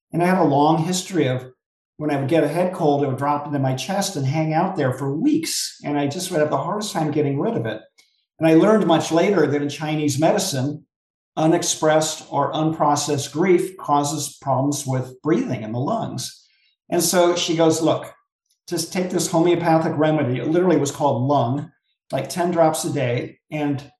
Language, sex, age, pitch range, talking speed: English, male, 50-69, 140-175 Hz, 200 wpm